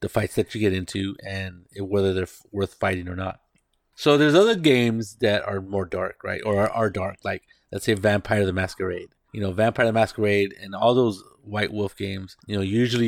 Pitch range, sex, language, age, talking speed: 100-115 Hz, male, English, 30-49, 210 wpm